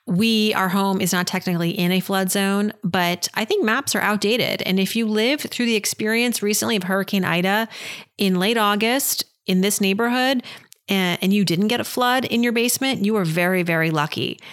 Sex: female